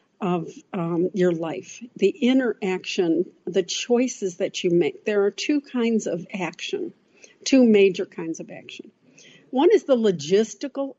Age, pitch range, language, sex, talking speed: 60-79, 195-240 Hz, English, female, 140 wpm